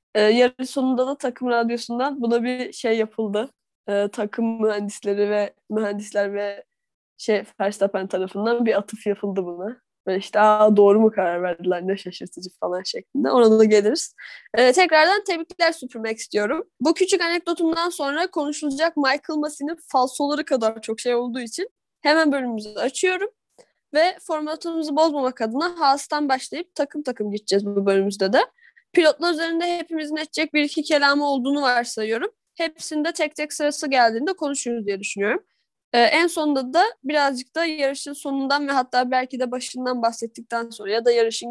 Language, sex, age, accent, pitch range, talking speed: Turkish, female, 10-29, native, 225-315 Hz, 150 wpm